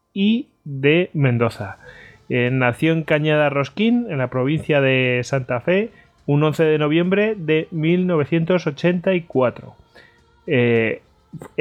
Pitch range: 120-155 Hz